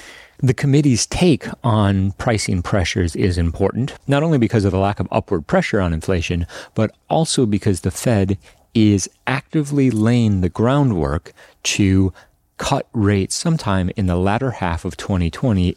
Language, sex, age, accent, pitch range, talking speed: English, male, 40-59, American, 90-110 Hz, 150 wpm